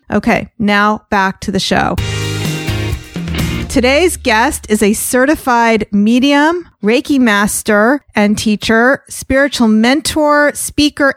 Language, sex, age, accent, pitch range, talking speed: English, female, 40-59, American, 210-250 Hz, 100 wpm